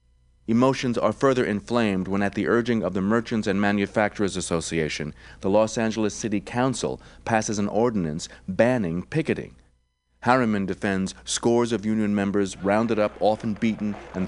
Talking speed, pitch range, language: 145 wpm, 95-115 Hz, English